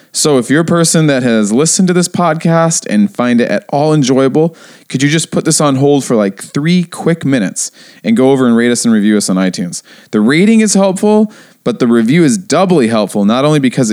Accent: American